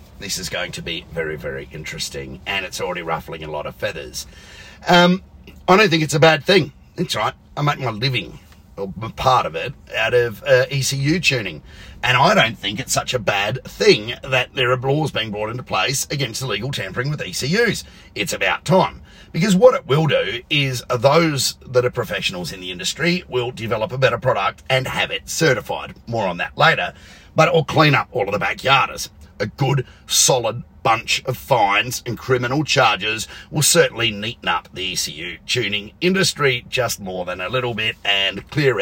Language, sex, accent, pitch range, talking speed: English, male, Australian, 105-150 Hz, 190 wpm